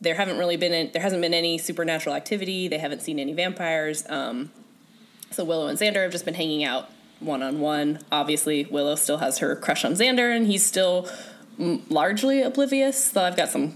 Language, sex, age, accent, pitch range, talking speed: English, female, 10-29, American, 155-230 Hz, 200 wpm